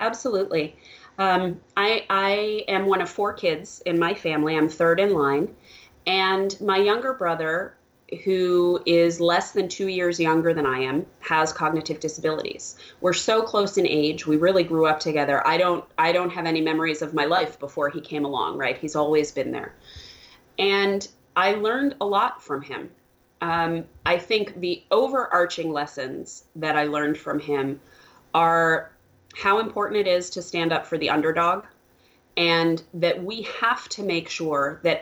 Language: English